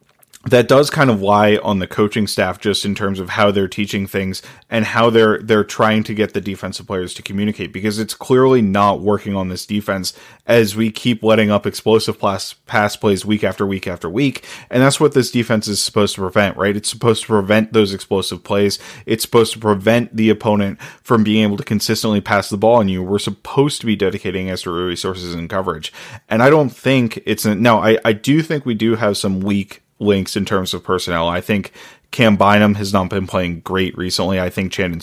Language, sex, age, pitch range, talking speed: English, male, 20-39, 100-115 Hz, 220 wpm